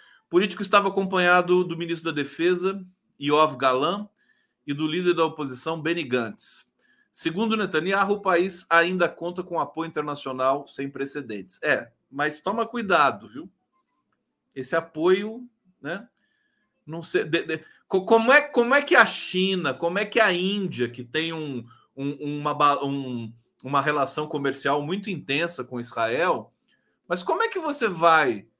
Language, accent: Portuguese, Brazilian